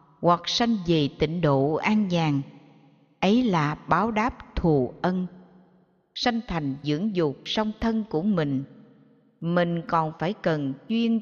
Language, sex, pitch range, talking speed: Vietnamese, female, 155-225 Hz, 140 wpm